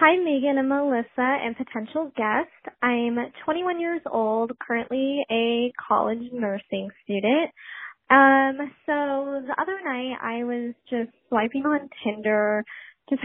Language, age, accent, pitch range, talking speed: English, 10-29, American, 220-270 Hz, 125 wpm